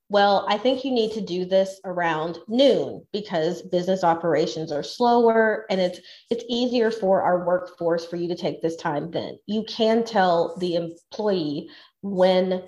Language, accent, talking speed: English, American, 165 wpm